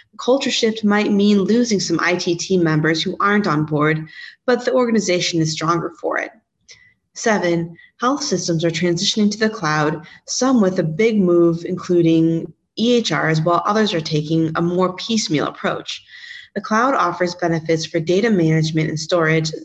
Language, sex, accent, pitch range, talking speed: English, female, American, 160-210 Hz, 160 wpm